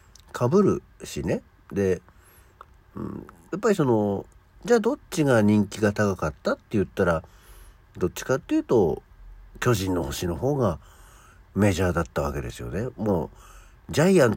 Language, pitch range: Japanese, 85-120 Hz